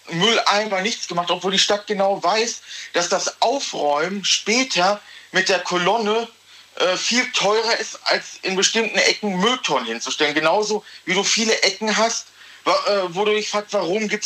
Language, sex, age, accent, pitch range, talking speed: German, male, 40-59, German, 170-210 Hz, 160 wpm